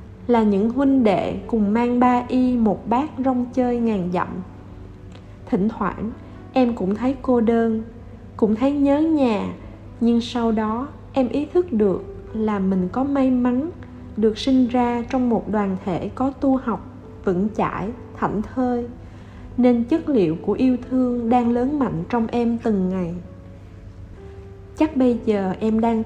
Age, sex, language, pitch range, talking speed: 20-39, female, Vietnamese, 190-255 Hz, 160 wpm